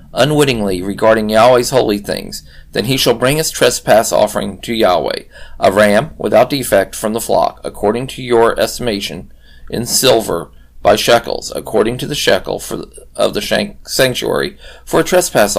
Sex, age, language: male, 40-59, English